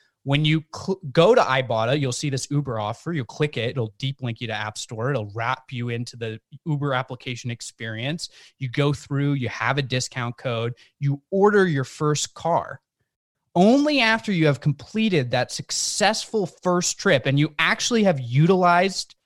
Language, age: English, 20-39